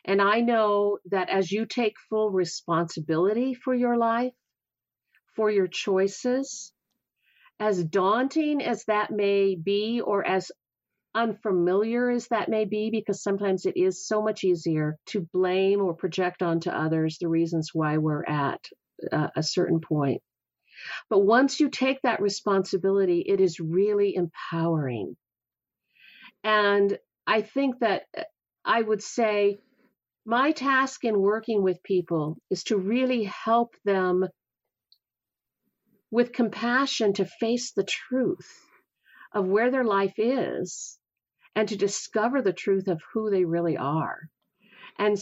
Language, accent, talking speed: English, American, 130 wpm